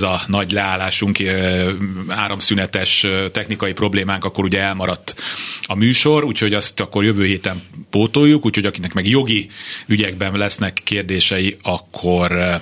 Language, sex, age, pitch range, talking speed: Hungarian, male, 30-49, 90-105 Hz, 125 wpm